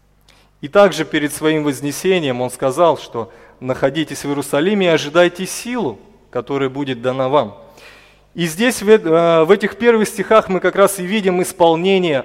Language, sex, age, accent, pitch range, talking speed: Russian, male, 30-49, native, 150-195 Hz, 145 wpm